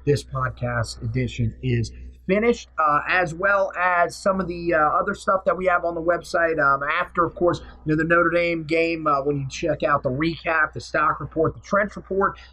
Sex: male